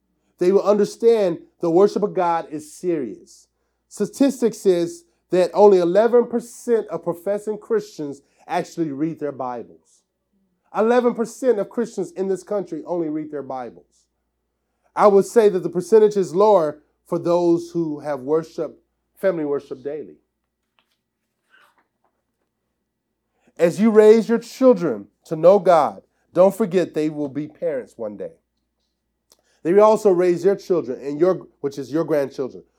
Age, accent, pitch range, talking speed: 30-49, American, 155-200 Hz, 135 wpm